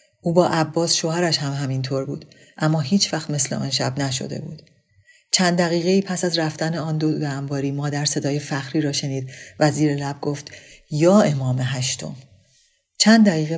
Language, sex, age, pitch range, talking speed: Persian, female, 40-59, 140-170 Hz, 170 wpm